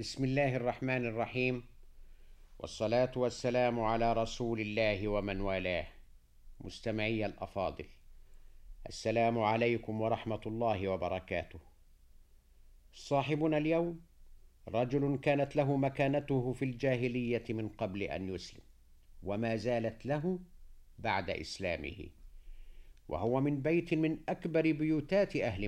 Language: Arabic